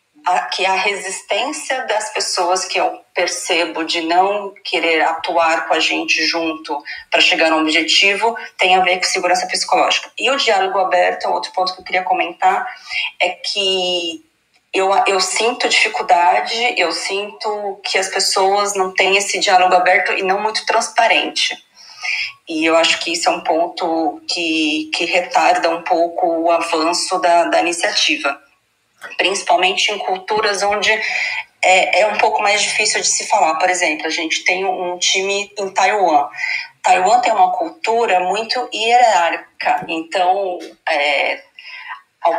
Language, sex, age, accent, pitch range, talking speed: Portuguese, female, 30-49, Brazilian, 175-215 Hz, 150 wpm